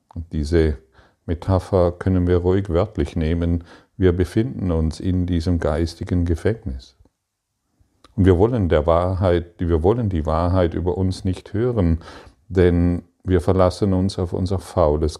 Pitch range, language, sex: 85-100 Hz, German, male